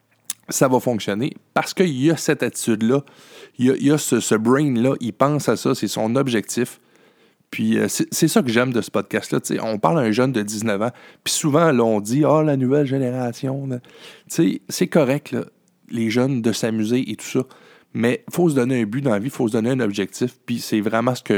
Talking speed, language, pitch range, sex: 240 wpm, French, 115-150 Hz, male